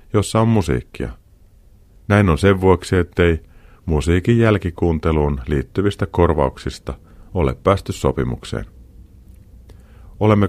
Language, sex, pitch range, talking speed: Finnish, male, 75-95 Hz, 90 wpm